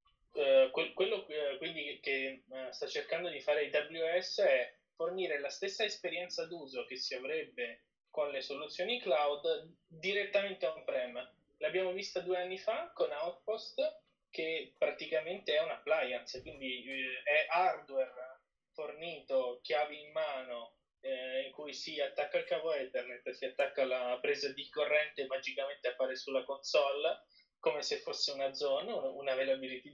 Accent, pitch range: native, 135-200 Hz